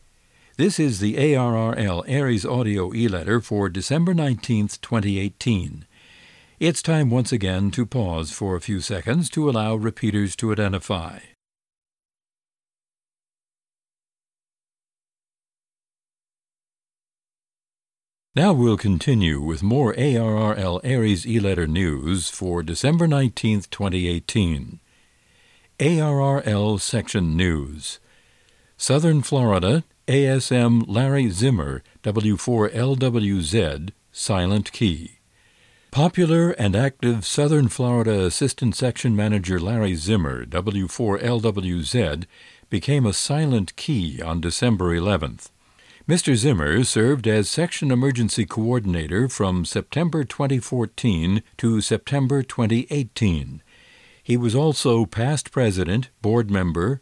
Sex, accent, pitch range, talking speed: male, American, 95-130 Hz, 95 wpm